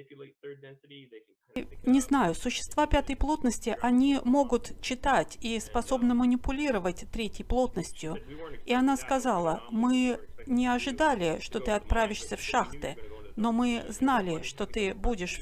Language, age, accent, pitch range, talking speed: Russian, 50-69, native, 215-270 Hz, 115 wpm